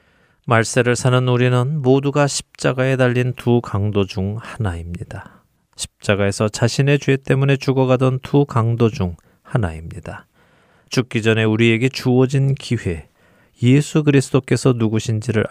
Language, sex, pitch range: Korean, male, 100-130 Hz